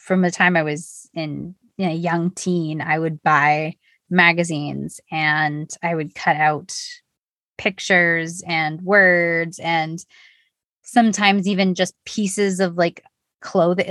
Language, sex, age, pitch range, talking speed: English, female, 20-39, 155-195 Hz, 135 wpm